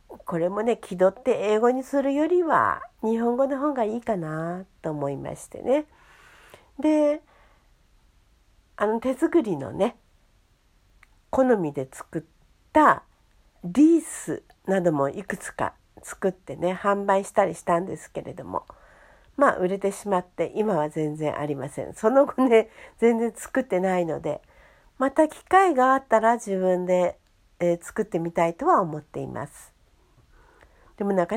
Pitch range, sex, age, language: 170-280 Hz, female, 50-69, Japanese